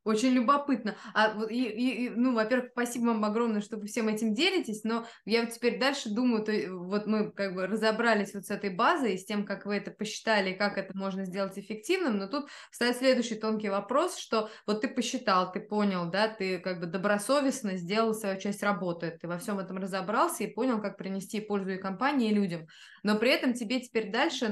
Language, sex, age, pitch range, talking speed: Russian, female, 20-39, 200-235 Hz, 205 wpm